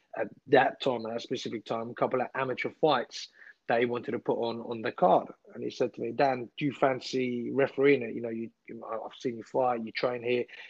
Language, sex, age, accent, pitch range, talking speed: English, male, 30-49, British, 120-140 Hz, 240 wpm